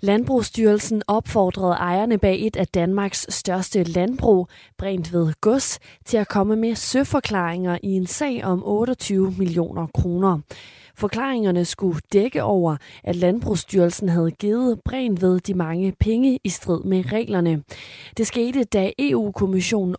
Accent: native